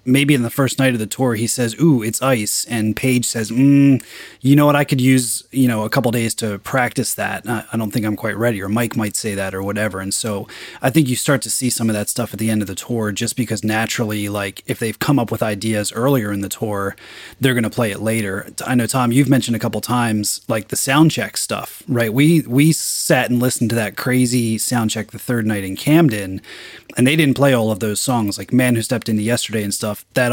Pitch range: 105-130 Hz